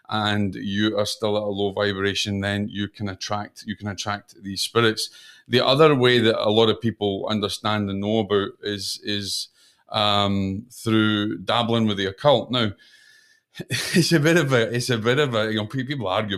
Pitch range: 100-110 Hz